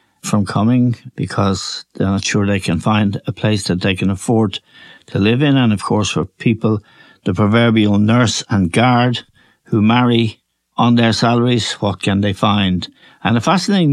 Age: 60-79